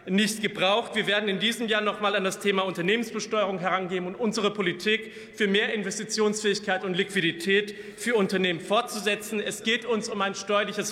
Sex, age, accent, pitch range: male, 40-59, German, 195-220 Hz